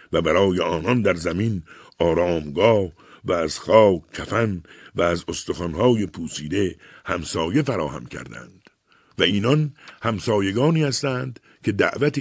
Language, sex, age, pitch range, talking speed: Persian, male, 60-79, 90-120 Hz, 115 wpm